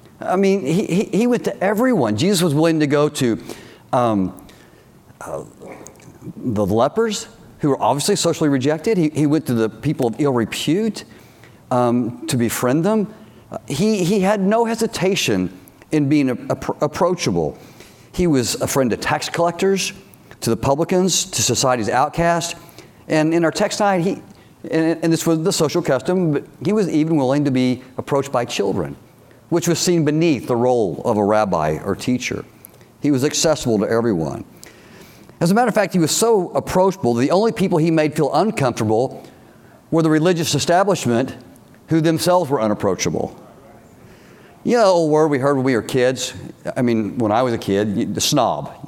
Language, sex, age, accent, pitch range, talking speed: English, male, 50-69, American, 125-175 Hz, 175 wpm